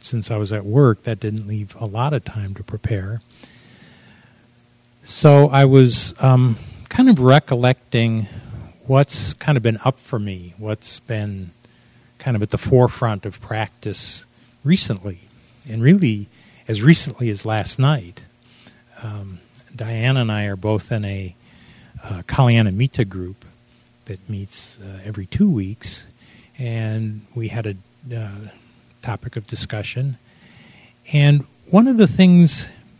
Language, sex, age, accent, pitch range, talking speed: English, male, 40-59, American, 110-130 Hz, 140 wpm